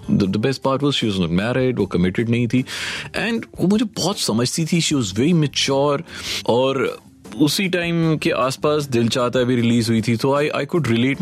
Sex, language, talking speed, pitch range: male, Hindi, 200 wpm, 105-155 Hz